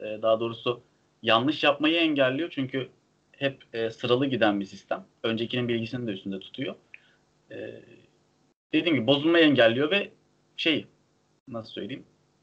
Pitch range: 115-145 Hz